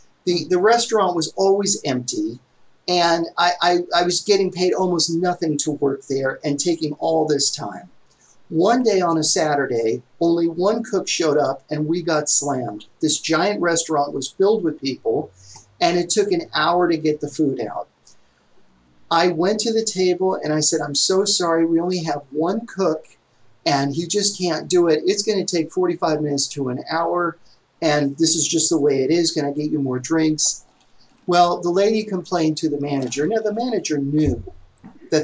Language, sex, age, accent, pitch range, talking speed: English, male, 40-59, American, 150-200 Hz, 190 wpm